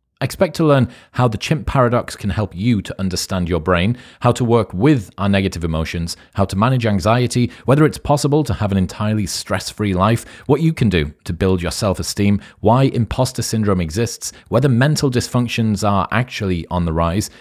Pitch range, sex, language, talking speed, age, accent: 85-110 Hz, male, English, 185 wpm, 30-49, British